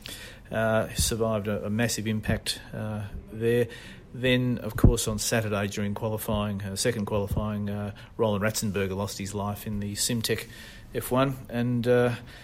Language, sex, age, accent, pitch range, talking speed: English, male, 40-59, Australian, 105-120 Hz, 140 wpm